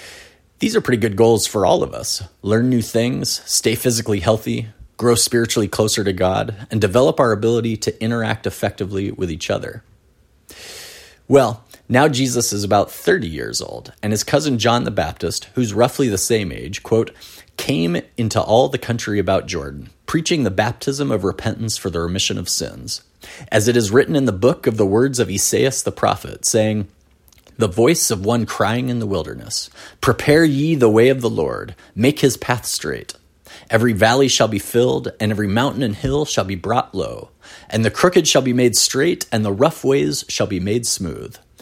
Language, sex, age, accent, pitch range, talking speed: English, male, 30-49, American, 100-120 Hz, 185 wpm